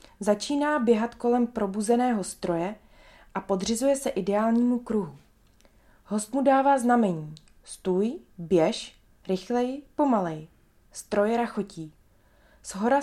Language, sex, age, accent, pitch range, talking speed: Czech, female, 20-39, native, 195-265 Hz, 100 wpm